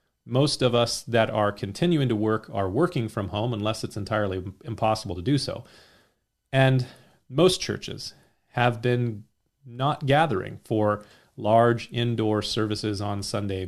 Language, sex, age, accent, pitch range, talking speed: English, male, 40-59, American, 110-135 Hz, 140 wpm